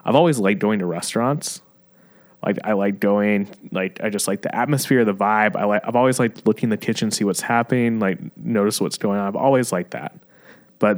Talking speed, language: 220 wpm, English